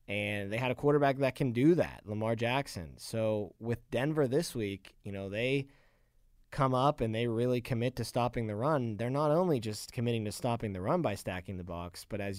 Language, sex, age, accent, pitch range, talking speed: English, male, 20-39, American, 100-135 Hz, 215 wpm